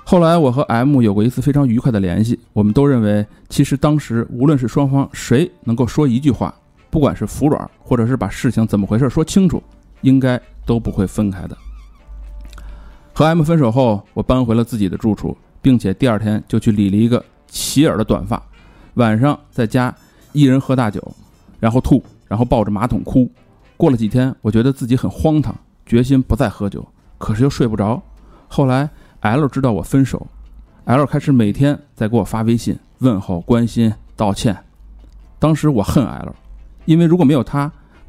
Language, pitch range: Chinese, 105-145 Hz